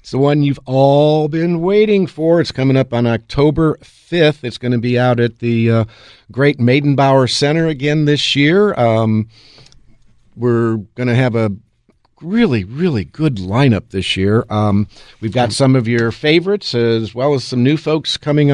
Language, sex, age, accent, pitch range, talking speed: English, male, 50-69, American, 110-145 Hz, 175 wpm